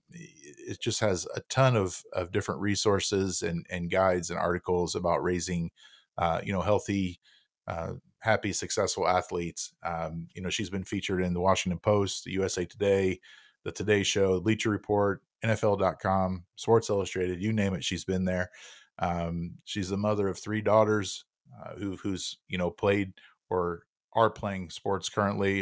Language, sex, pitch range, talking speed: English, male, 90-100 Hz, 160 wpm